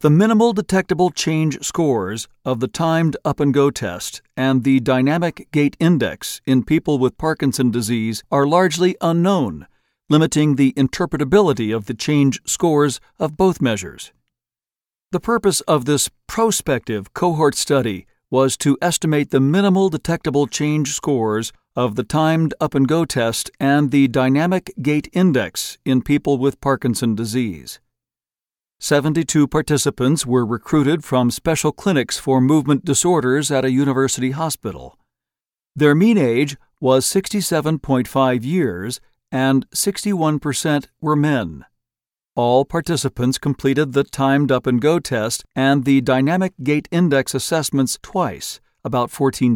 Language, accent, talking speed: English, American, 125 wpm